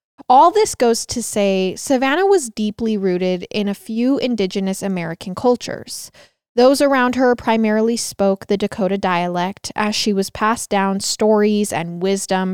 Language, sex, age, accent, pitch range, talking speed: English, female, 20-39, American, 195-250 Hz, 150 wpm